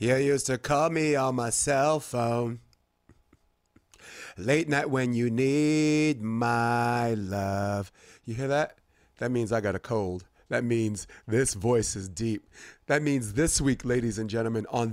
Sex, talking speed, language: male, 155 wpm, English